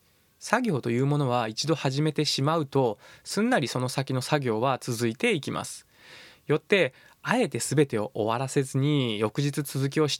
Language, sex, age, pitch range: Japanese, male, 20-39, 115-155 Hz